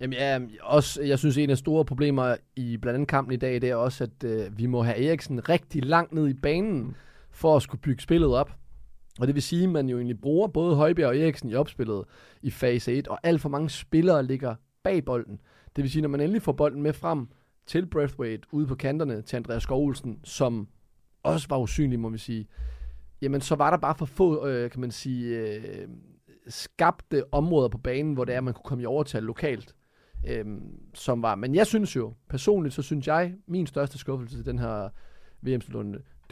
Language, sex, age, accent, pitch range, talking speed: Danish, male, 30-49, native, 120-150 Hz, 220 wpm